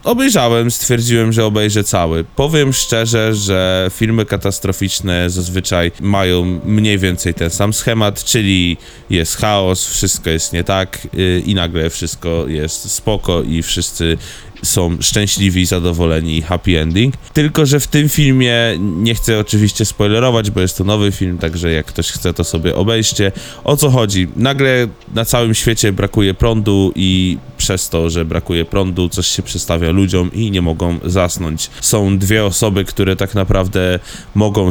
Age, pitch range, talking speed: 20-39, 90-115 Hz, 150 wpm